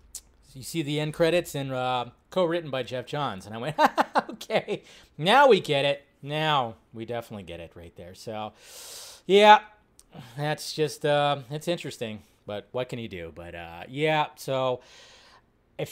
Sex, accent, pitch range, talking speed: male, American, 125-180 Hz, 160 wpm